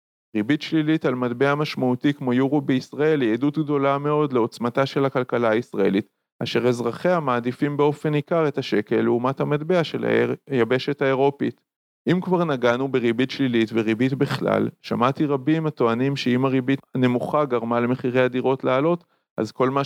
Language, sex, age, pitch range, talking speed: Hebrew, male, 40-59, 115-140 Hz, 145 wpm